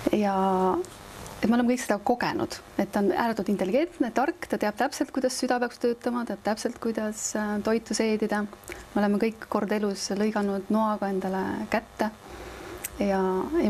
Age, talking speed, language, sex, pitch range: 30-49, 160 wpm, English, female, 195-240 Hz